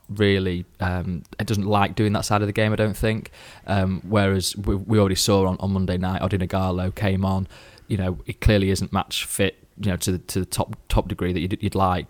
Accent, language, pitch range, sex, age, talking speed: British, English, 95-100 Hz, male, 20-39, 235 wpm